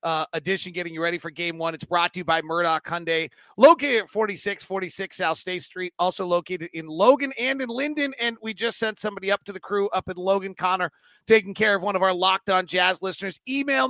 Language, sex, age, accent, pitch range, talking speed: English, male, 30-49, American, 180-215 Hz, 225 wpm